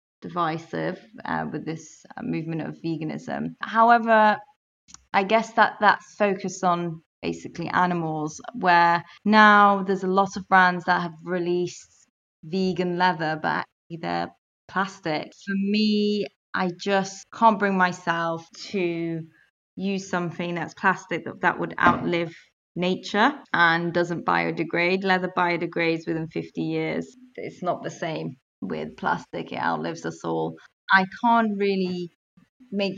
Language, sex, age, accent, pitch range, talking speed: English, female, 20-39, British, 165-195 Hz, 130 wpm